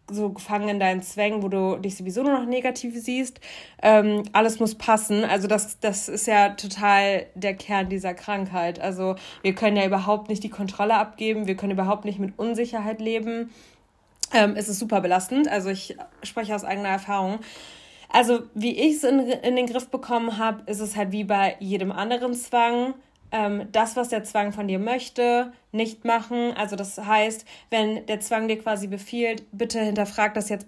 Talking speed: 180 wpm